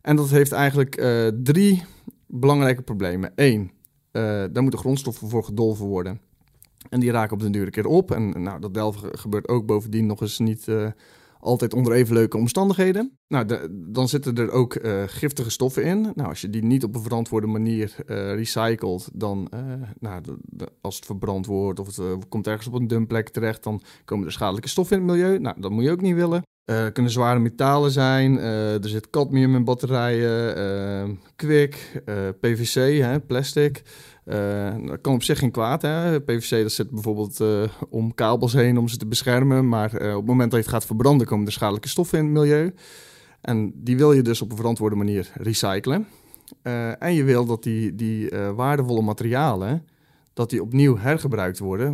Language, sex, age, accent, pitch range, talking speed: Dutch, male, 40-59, Dutch, 105-135 Hz, 200 wpm